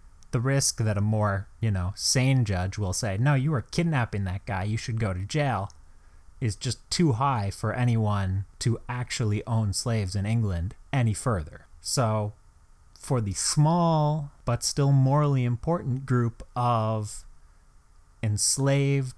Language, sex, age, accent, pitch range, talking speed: English, male, 30-49, American, 95-130 Hz, 145 wpm